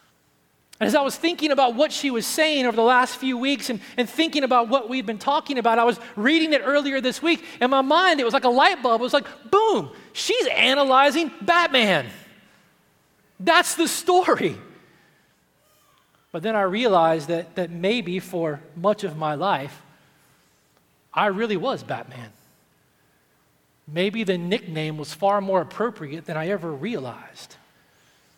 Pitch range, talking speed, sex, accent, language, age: 170-250 Hz, 165 wpm, male, American, English, 30-49